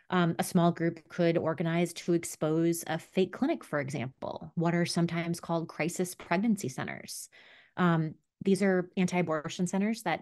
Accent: American